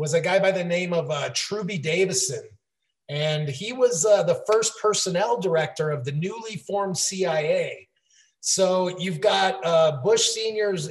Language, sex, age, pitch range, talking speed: English, male, 30-49, 155-190 Hz, 160 wpm